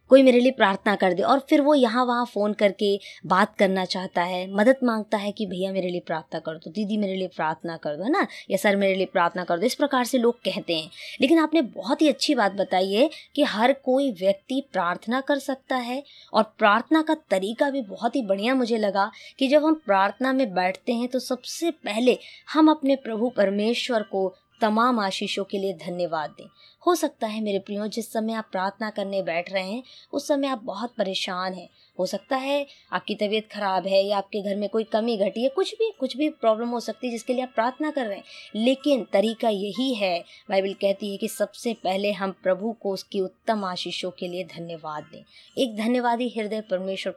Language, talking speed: Hindi, 215 wpm